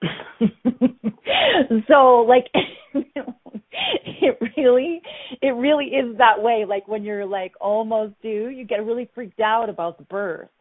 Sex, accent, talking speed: female, American, 130 wpm